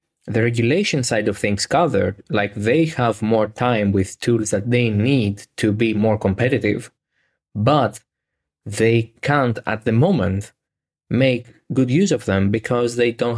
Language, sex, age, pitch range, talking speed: Greek, male, 20-39, 100-130 Hz, 150 wpm